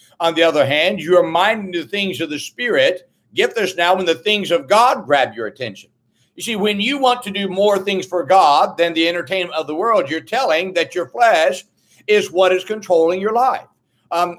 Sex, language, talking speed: male, English, 215 wpm